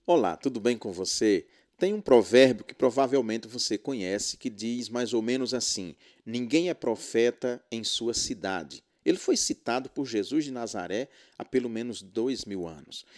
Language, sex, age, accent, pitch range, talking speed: Portuguese, male, 50-69, Brazilian, 110-140 Hz, 170 wpm